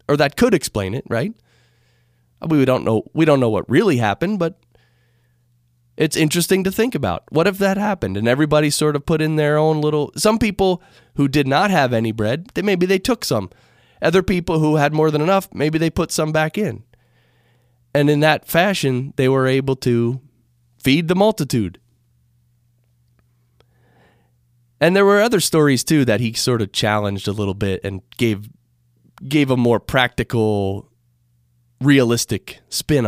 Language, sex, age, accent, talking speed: English, male, 20-39, American, 170 wpm